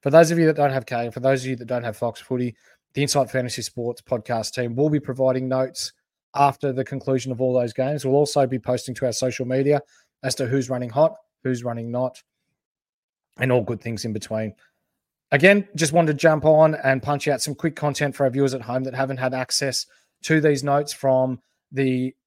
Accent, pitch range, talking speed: Australian, 125-140 Hz, 220 wpm